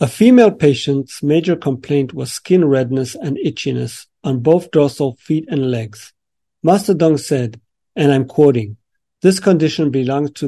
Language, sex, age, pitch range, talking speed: English, male, 50-69, 130-160 Hz, 150 wpm